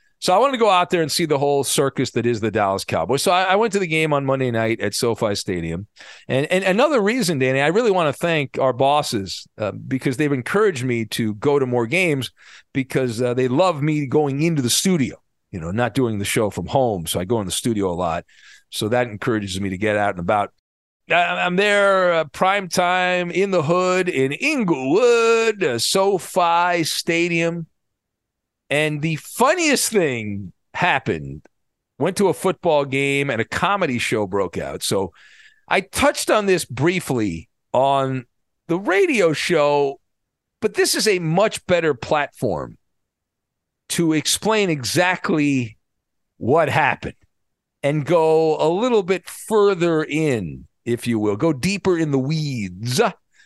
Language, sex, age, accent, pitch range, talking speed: English, male, 40-59, American, 125-185 Hz, 170 wpm